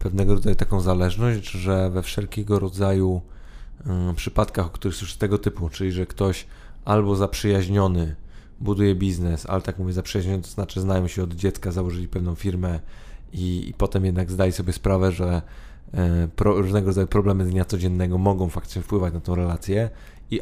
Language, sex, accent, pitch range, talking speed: Polish, male, native, 90-100 Hz, 165 wpm